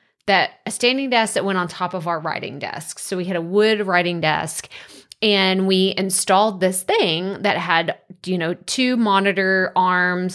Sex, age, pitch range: female, 20-39, 170-205 Hz